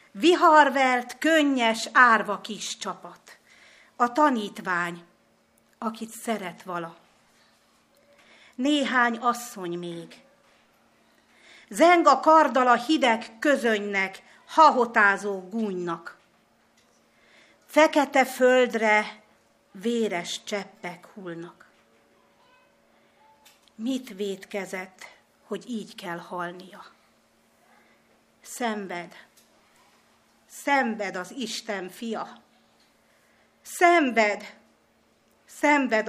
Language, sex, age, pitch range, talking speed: Hungarian, female, 50-69, 195-275 Hz, 65 wpm